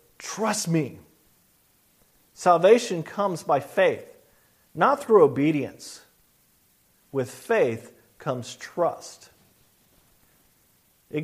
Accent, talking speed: American, 75 wpm